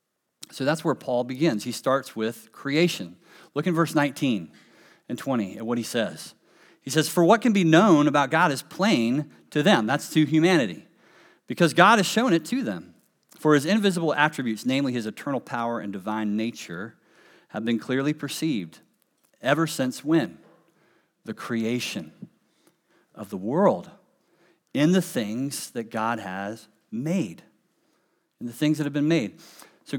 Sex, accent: male, American